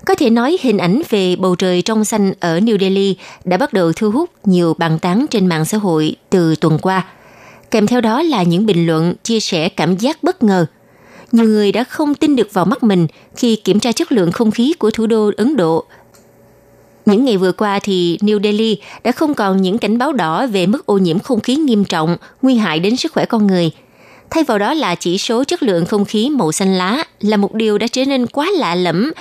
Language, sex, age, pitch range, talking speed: Vietnamese, female, 20-39, 180-235 Hz, 230 wpm